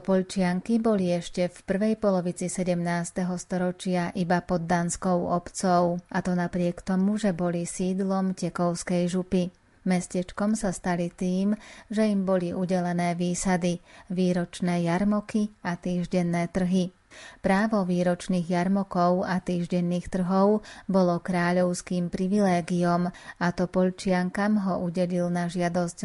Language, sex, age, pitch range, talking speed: Slovak, female, 30-49, 175-190 Hz, 120 wpm